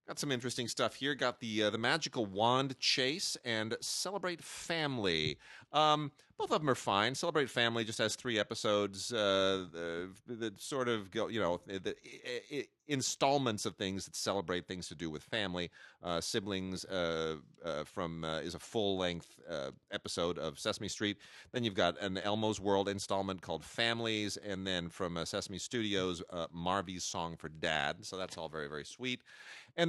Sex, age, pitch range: male, 30-49, 90-130 Hz